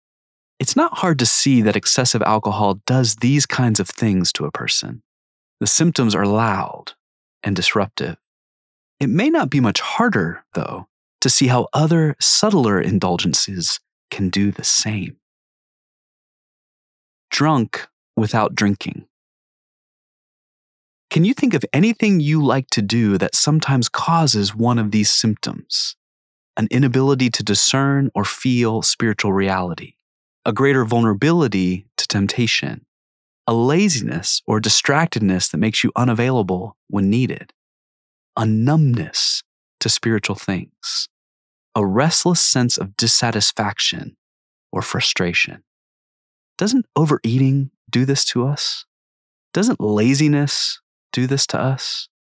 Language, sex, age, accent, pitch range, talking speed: English, male, 30-49, American, 100-135 Hz, 120 wpm